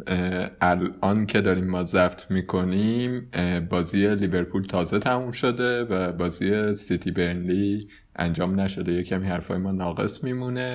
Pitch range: 90-110 Hz